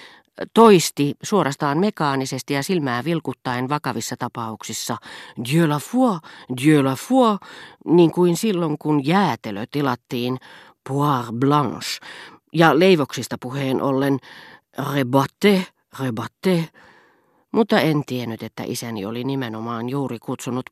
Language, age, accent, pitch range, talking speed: Finnish, 40-59, native, 125-155 Hz, 105 wpm